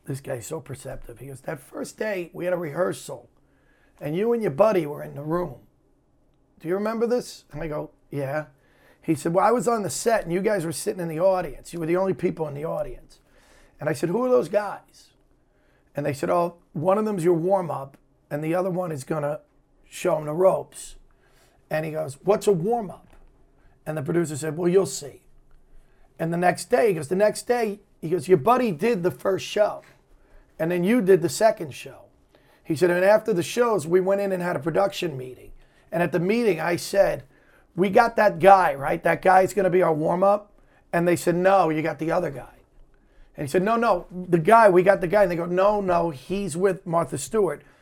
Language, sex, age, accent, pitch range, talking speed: English, male, 40-59, American, 155-195 Hz, 225 wpm